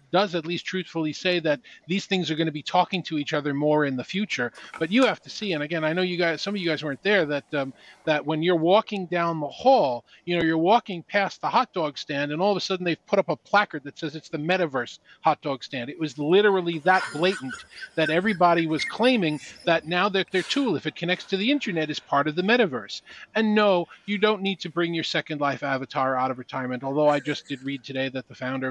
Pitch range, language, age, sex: 150-190 Hz, English, 40-59, male